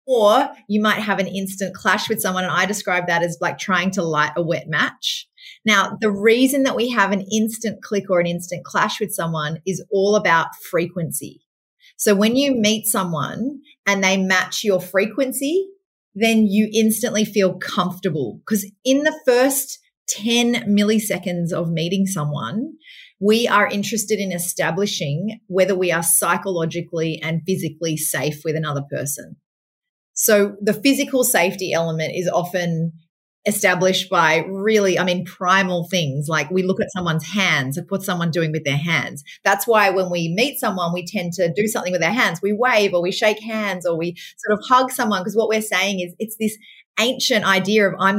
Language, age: English, 30-49